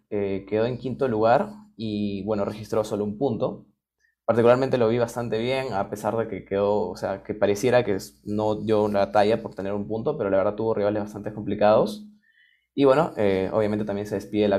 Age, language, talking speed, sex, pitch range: 20-39, Spanish, 200 wpm, male, 105-135 Hz